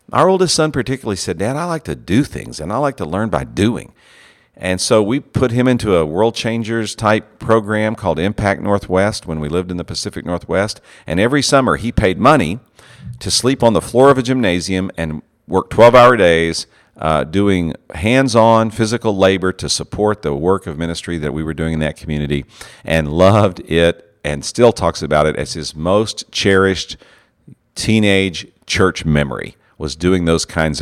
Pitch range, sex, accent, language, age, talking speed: 85-115 Hz, male, American, English, 50-69, 185 wpm